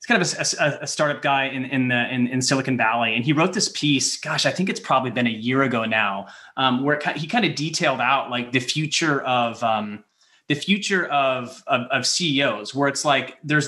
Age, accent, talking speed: 30-49, American, 240 wpm